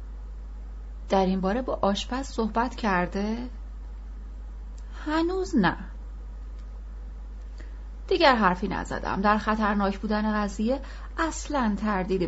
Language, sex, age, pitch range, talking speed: Persian, female, 30-49, 165-230 Hz, 90 wpm